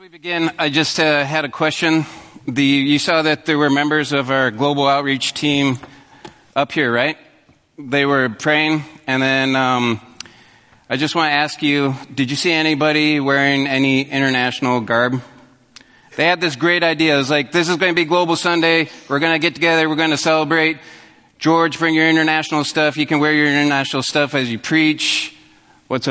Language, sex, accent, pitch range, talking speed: English, male, American, 130-160 Hz, 190 wpm